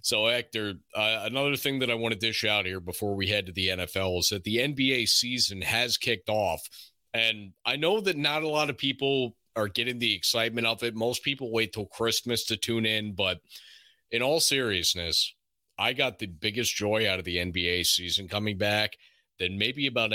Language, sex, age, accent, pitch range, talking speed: English, male, 30-49, American, 105-140 Hz, 205 wpm